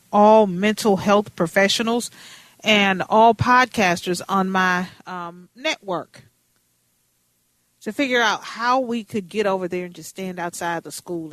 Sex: female